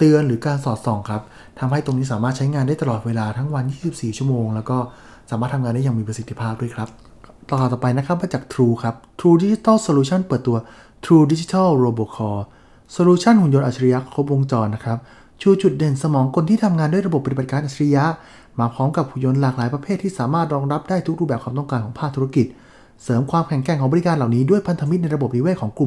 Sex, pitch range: male, 120-155 Hz